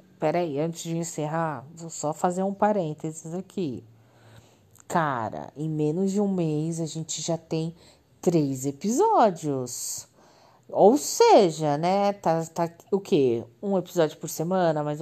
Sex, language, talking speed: female, Portuguese, 140 wpm